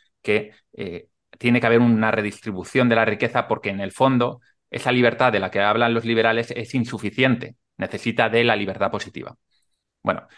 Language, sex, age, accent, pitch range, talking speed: Spanish, male, 30-49, Spanish, 100-120 Hz, 175 wpm